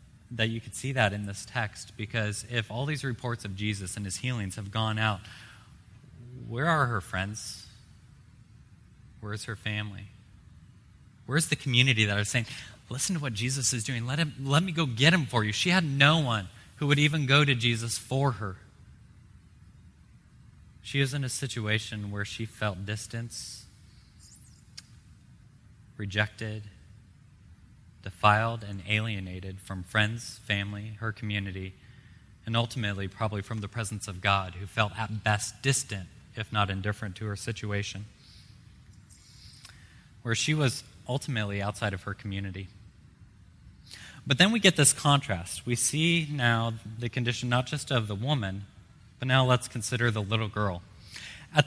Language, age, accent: English, 20-39, American